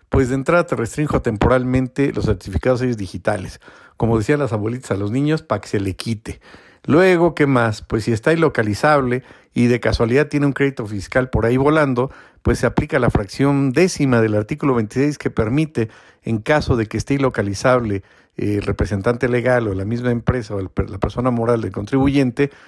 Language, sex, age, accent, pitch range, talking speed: Spanish, male, 50-69, Mexican, 105-135 Hz, 180 wpm